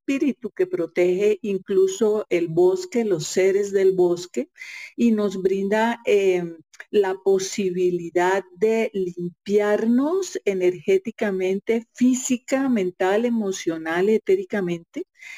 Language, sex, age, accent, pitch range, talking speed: Spanish, female, 50-69, Colombian, 180-225 Hz, 85 wpm